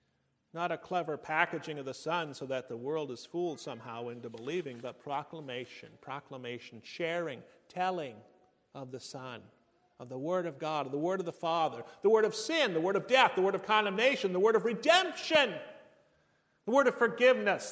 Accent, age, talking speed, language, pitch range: American, 40-59, 185 wpm, English, 145-215 Hz